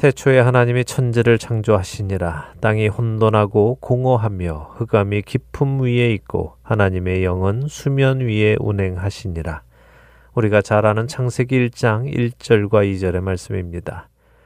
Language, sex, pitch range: Korean, male, 100-130 Hz